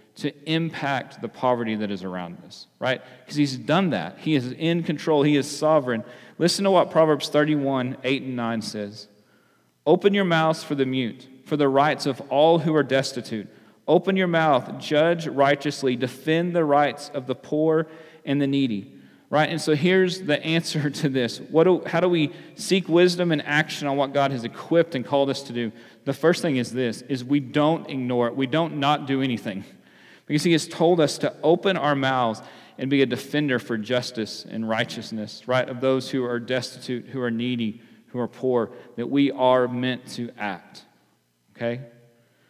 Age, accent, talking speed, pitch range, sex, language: 40-59, American, 190 wpm, 120-155 Hz, male, English